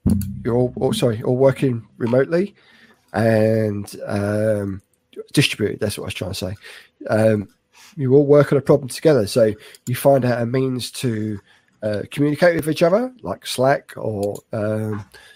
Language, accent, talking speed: English, British, 150 wpm